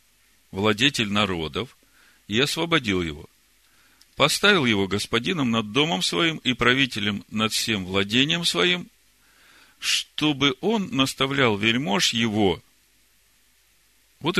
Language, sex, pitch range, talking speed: Russian, male, 110-150 Hz, 95 wpm